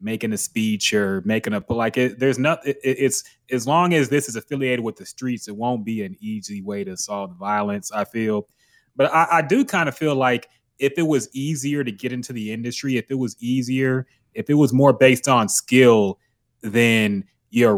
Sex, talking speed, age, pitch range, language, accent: male, 210 wpm, 20-39, 110-135 Hz, English, American